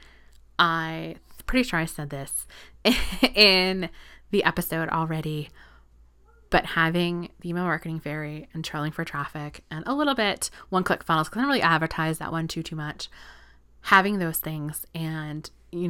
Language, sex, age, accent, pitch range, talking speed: English, female, 20-39, American, 145-170 Hz, 160 wpm